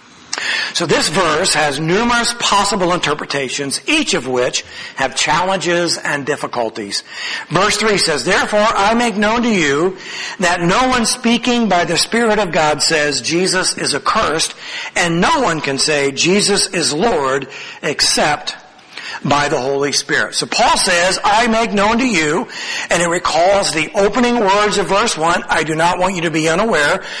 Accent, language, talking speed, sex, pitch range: American, English, 165 wpm, male, 165-225 Hz